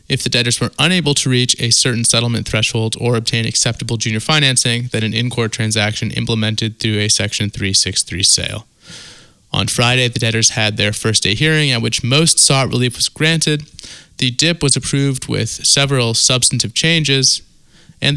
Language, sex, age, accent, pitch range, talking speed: English, male, 20-39, American, 115-140 Hz, 165 wpm